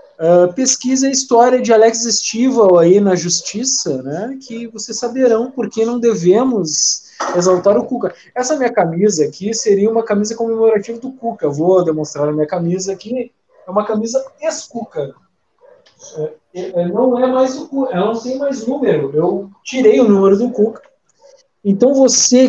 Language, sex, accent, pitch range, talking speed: Portuguese, male, Brazilian, 180-235 Hz, 160 wpm